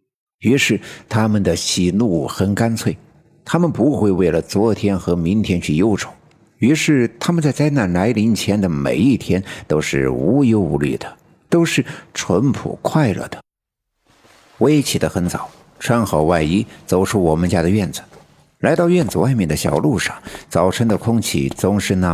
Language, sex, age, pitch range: Chinese, male, 60-79, 90-125 Hz